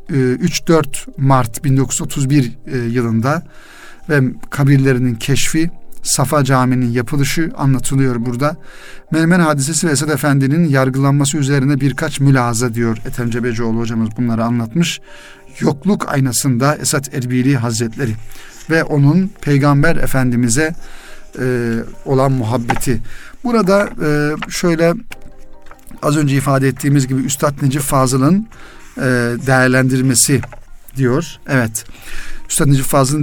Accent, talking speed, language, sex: native, 95 wpm, Turkish, male